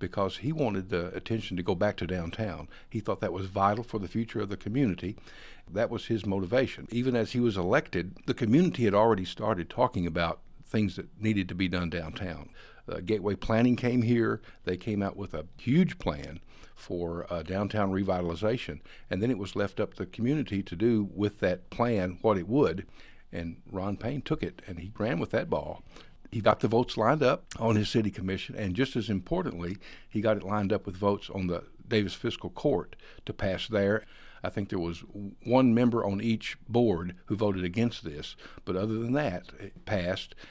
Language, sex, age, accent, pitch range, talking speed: English, male, 60-79, American, 95-115 Hz, 200 wpm